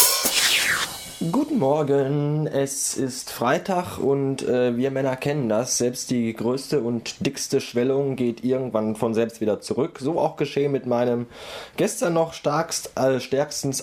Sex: male